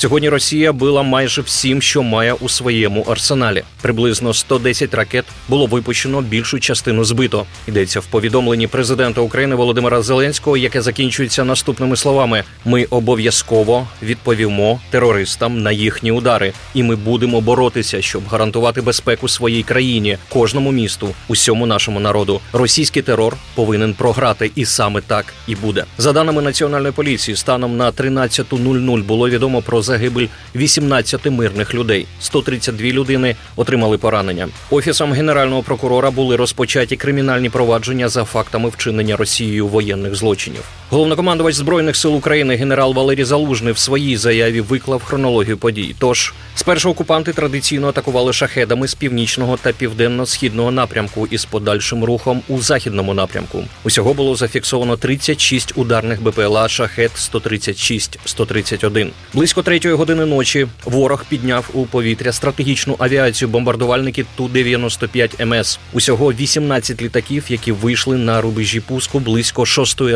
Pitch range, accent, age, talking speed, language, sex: 115-135 Hz, native, 30-49, 130 wpm, Ukrainian, male